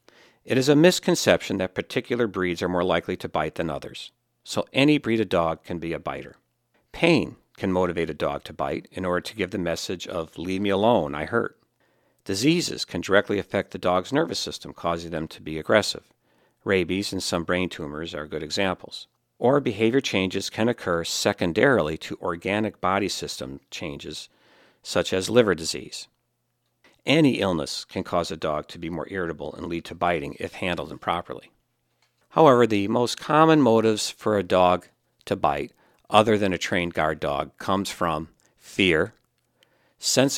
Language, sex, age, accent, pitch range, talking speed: English, male, 50-69, American, 85-115 Hz, 170 wpm